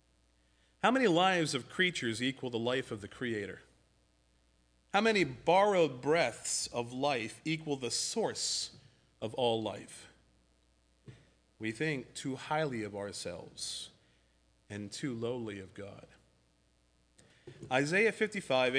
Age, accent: 40-59, American